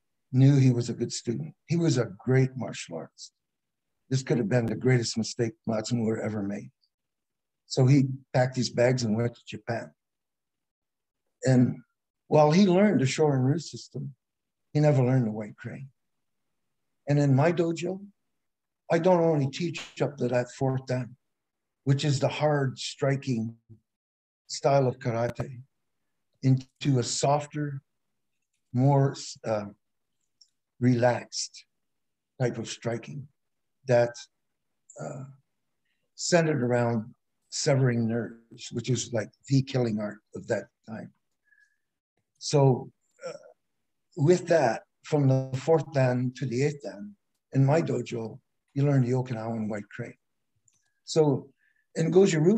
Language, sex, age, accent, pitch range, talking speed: English, male, 60-79, American, 120-150 Hz, 130 wpm